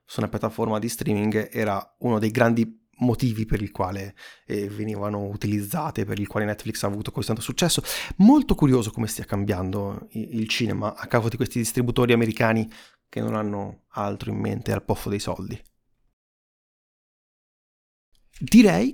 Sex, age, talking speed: male, 30-49, 155 wpm